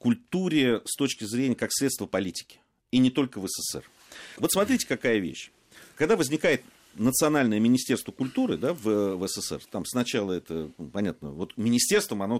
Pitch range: 100-145 Hz